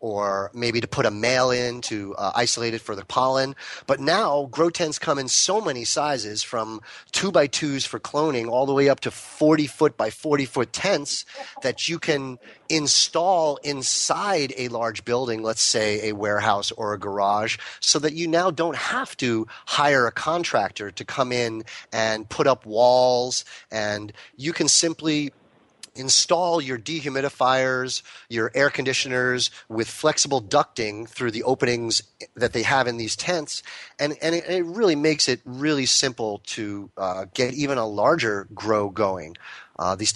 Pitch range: 110-145 Hz